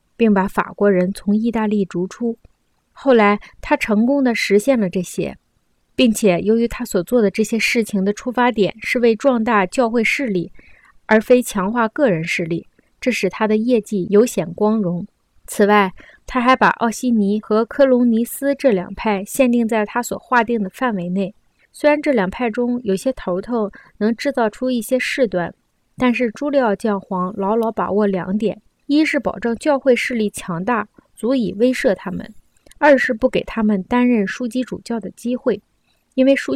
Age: 20-39